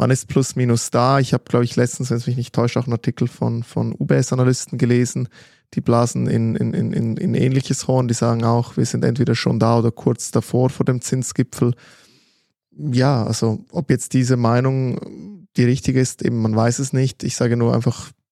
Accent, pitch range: German, 115-135 Hz